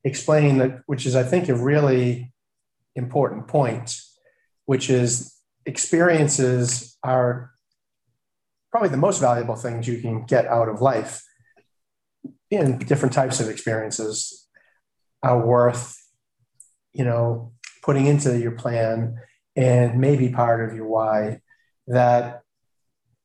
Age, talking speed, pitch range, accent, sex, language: 40-59, 115 wpm, 120-135 Hz, American, male, English